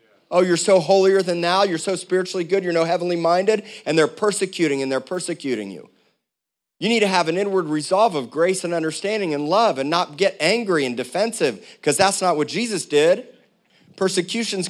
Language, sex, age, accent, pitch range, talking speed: English, male, 40-59, American, 130-175 Hz, 190 wpm